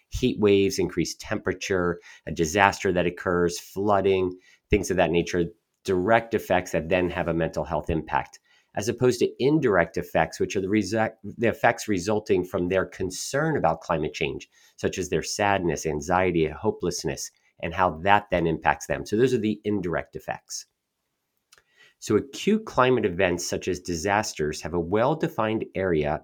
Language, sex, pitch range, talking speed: English, male, 85-110 Hz, 155 wpm